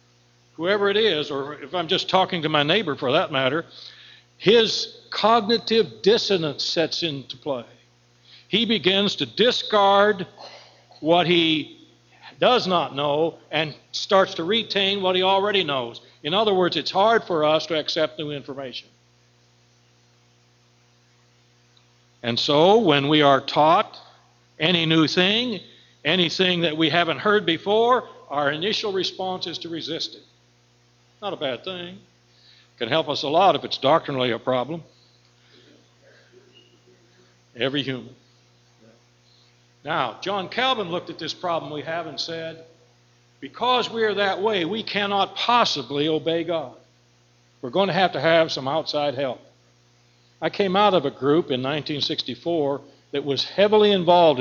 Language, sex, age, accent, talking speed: English, male, 60-79, American, 140 wpm